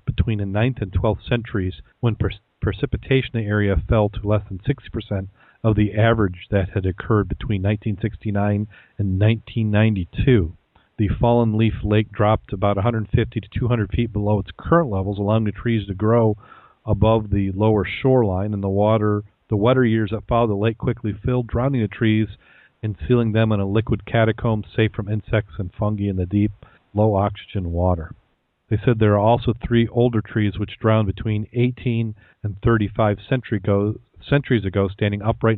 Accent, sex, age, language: American, male, 40-59, English